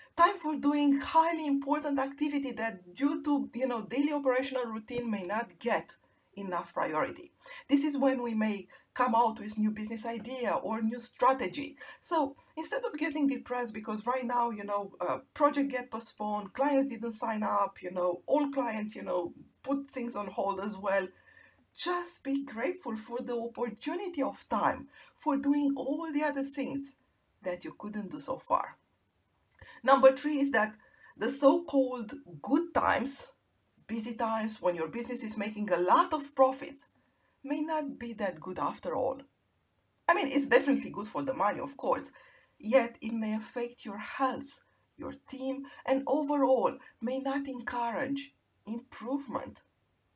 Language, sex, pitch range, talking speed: English, female, 220-280 Hz, 160 wpm